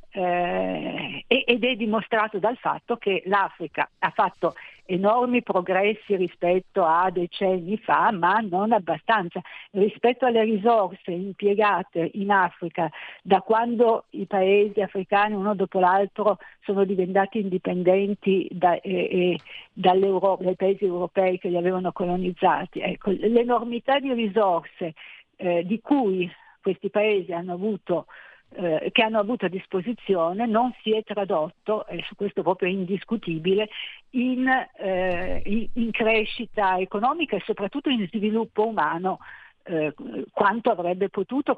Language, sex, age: Italian, female, 50-69